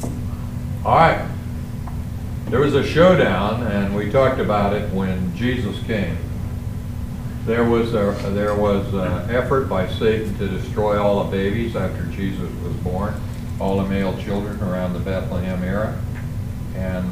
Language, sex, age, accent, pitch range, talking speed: English, male, 60-79, American, 100-115 Hz, 140 wpm